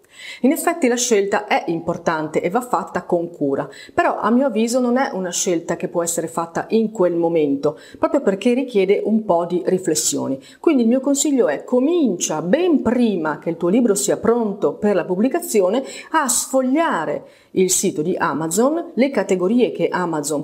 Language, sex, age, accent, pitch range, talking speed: Italian, female, 30-49, native, 175-260 Hz, 175 wpm